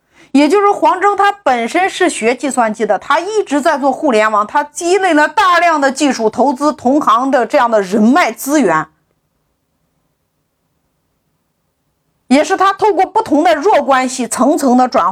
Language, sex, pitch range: Chinese, female, 235-345 Hz